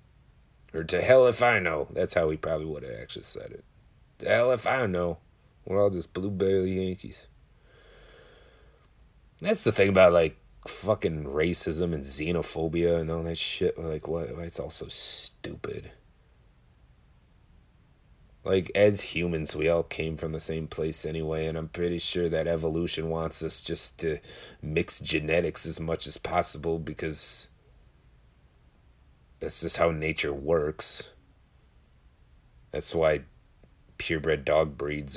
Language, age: English, 30-49